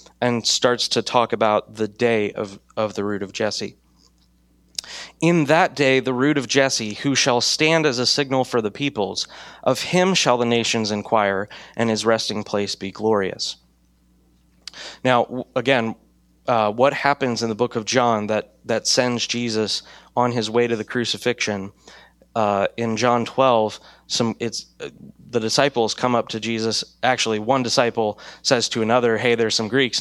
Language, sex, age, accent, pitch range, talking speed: English, male, 20-39, American, 110-130 Hz, 170 wpm